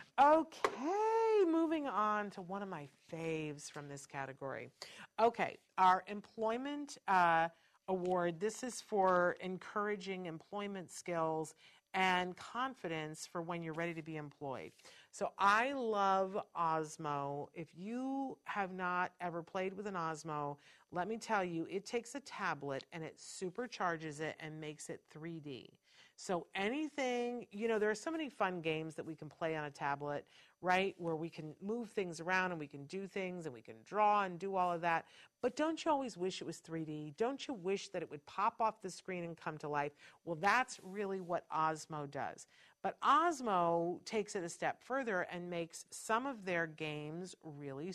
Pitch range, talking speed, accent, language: 160-210 Hz, 175 wpm, American, English